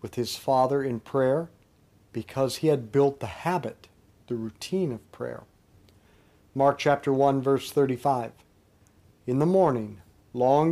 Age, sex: 50-69, male